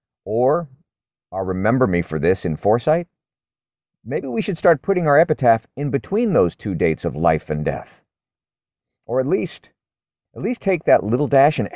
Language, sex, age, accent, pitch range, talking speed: English, male, 40-59, American, 95-145 Hz, 175 wpm